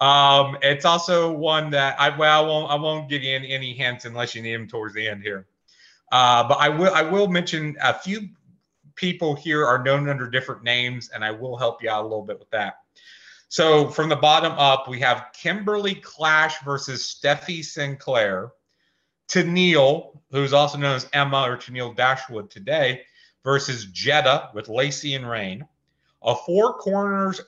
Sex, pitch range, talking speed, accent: male, 120-155 Hz, 180 wpm, American